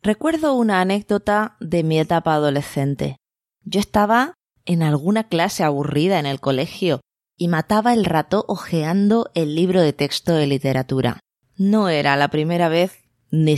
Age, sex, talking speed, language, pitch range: 20-39, female, 145 wpm, Spanish, 145-200 Hz